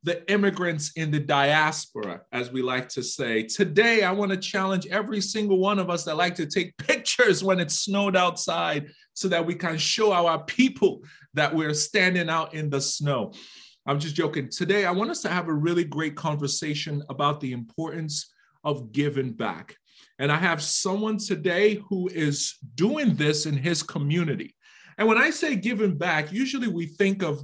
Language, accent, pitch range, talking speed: English, American, 145-185 Hz, 185 wpm